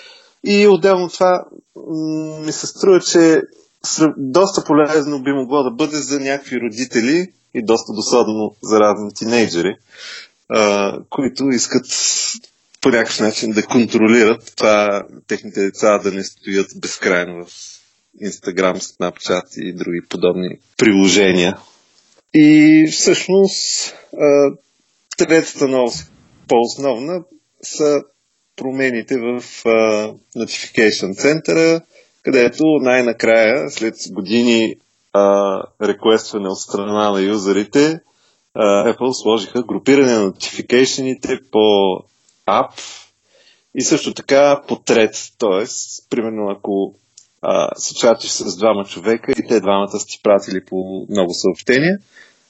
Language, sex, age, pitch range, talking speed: Bulgarian, male, 30-49, 105-145 Hz, 105 wpm